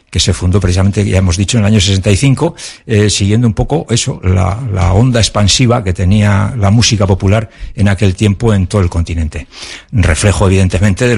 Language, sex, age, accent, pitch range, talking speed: Spanish, male, 60-79, Spanish, 90-110 Hz, 190 wpm